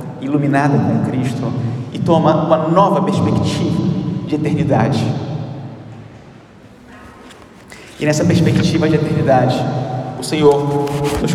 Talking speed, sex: 95 wpm, male